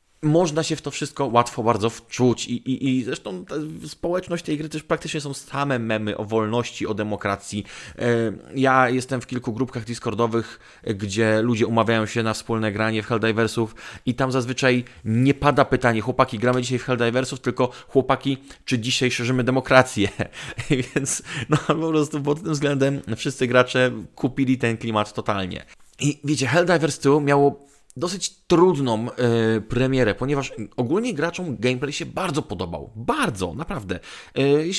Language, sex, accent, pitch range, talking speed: Polish, male, native, 110-140 Hz, 155 wpm